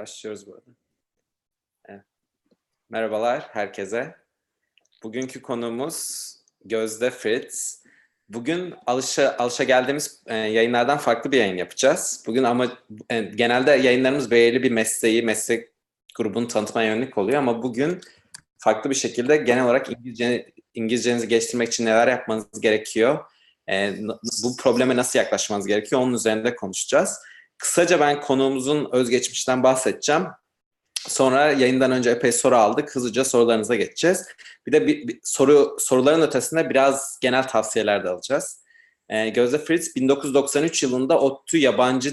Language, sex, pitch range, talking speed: Turkish, male, 115-135 Hz, 130 wpm